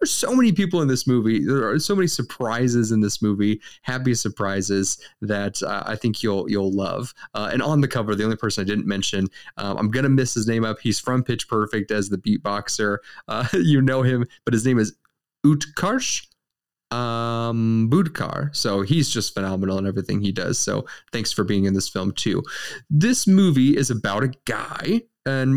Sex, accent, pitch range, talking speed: male, American, 105-150 Hz, 195 wpm